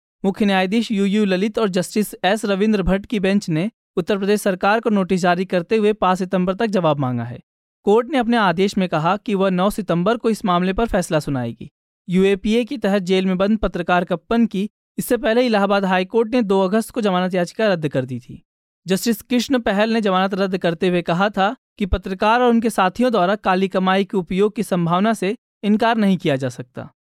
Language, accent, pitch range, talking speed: Hindi, native, 185-220 Hz, 205 wpm